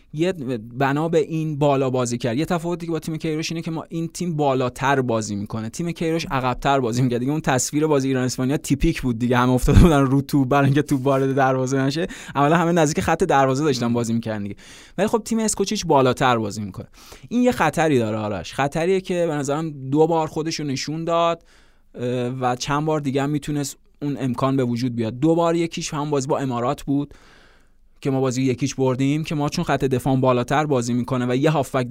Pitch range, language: 125-155 Hz, Persian